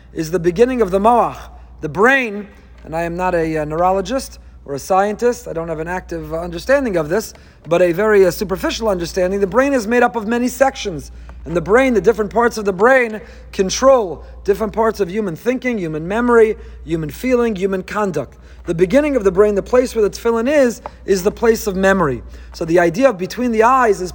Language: English